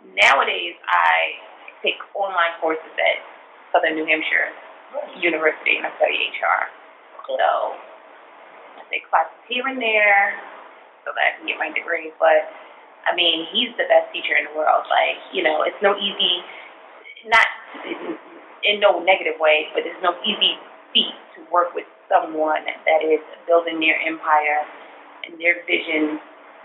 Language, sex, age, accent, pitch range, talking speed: English, female, 20-39, American, 160-195 Hz, 150 wpm